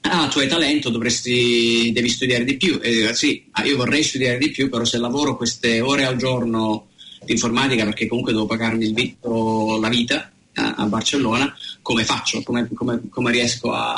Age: 30-49